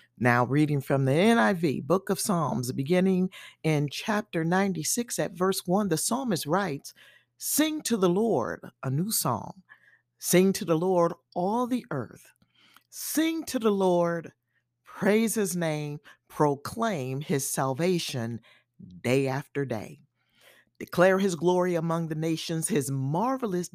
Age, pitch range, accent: 50-69, 135-190 Hz, American